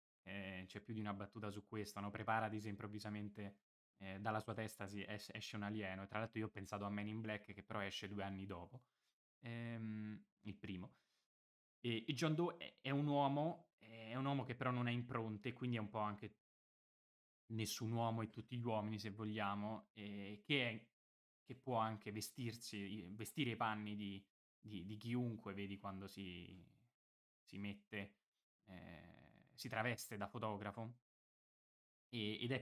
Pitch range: 100-115 Hz